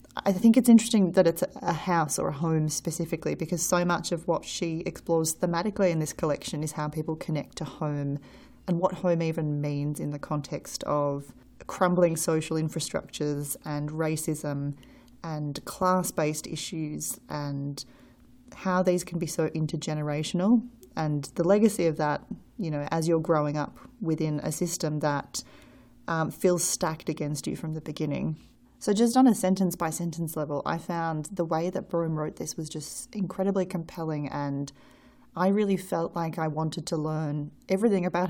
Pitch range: 150-180 Hz